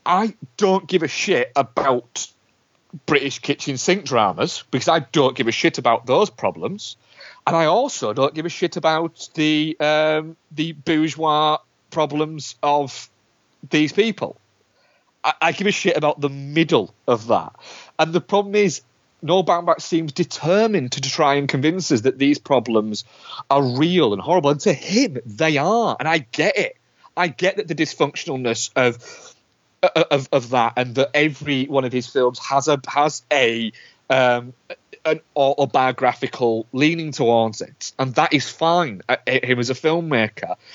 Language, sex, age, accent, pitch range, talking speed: English, male, 30-49, British, 135-165 Hz, 160 wpm